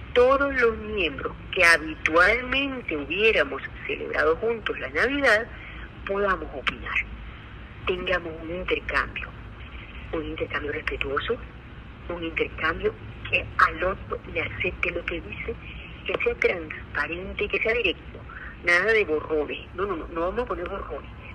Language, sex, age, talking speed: Spanish, female, 50-69, 125 wpm